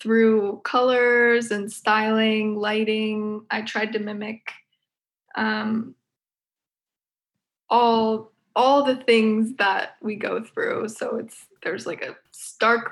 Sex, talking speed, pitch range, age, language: female, 110 wpm, 210-235 Hz, 20-39, English